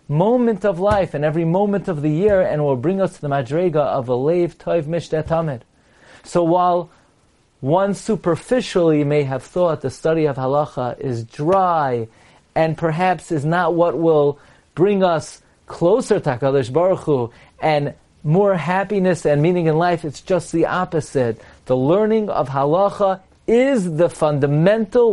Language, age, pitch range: English, 40-59, 140-180 Hz